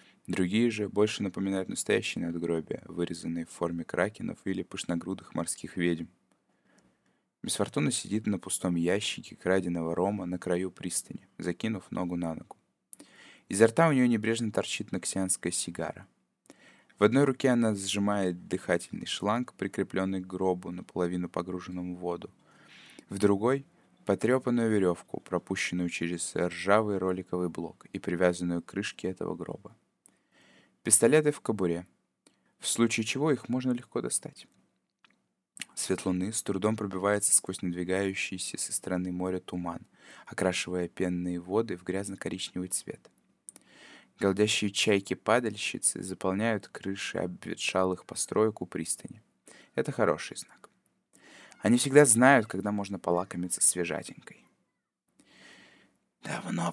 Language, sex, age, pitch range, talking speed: Russian, male, 20-39, 90-105 Hz, 115 wpm